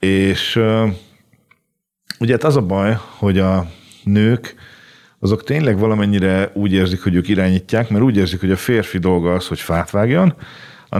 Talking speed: 165 wpm